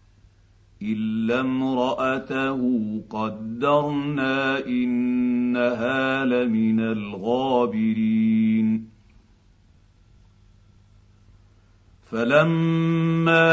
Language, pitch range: Arabic, 110-150 Hz